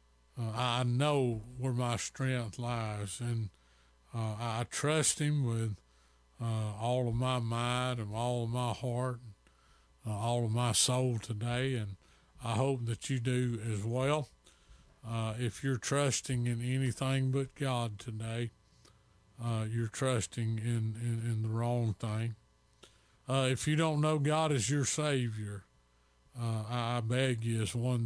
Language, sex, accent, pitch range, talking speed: English, male, American, 110-130 Hz, 150 wpm